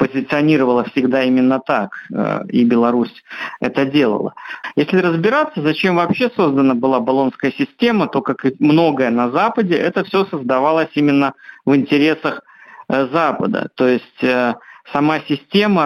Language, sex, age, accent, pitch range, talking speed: Russian, male, 50-69, native, 135-185 Hz, 125 wpm